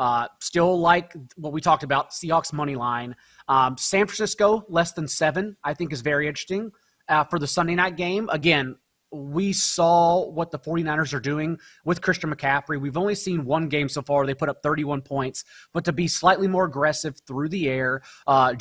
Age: 30-49